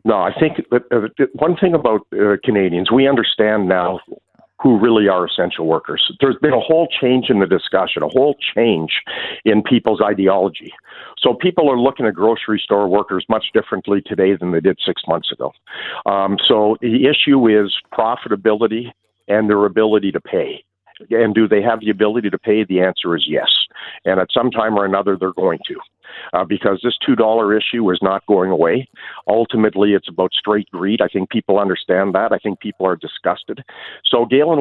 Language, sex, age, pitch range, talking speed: English, male, 50-69, 95-115 Hz, 180 wpm